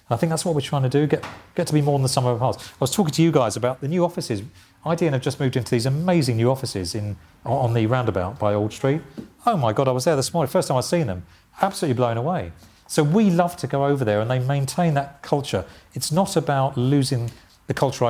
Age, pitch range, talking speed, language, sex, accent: 40-59, 110-140 Hz, 260 wpm, English, male, British